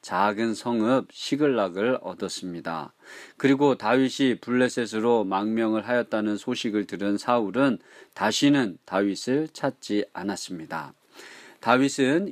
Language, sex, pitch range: Korean, male, 100-130 Hz